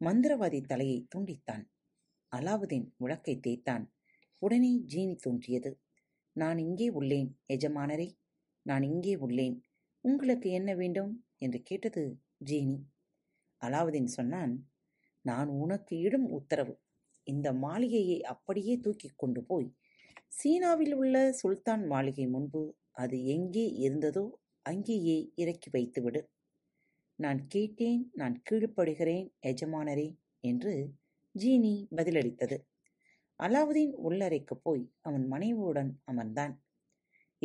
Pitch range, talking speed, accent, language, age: 140-205 Hz, 90 wpm, native, Tamil, 30-49